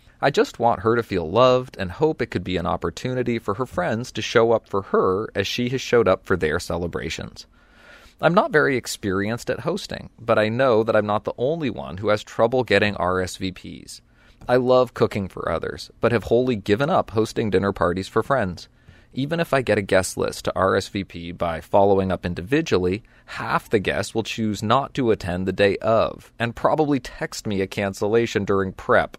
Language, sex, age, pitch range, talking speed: English, male, 30-49, 95-120 Hz, 200 wpm